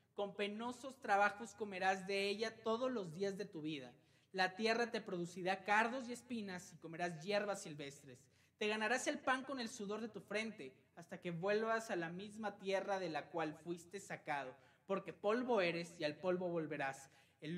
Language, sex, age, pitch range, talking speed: Spanish, male, 30-49, 165-215 Hz, 180 wpm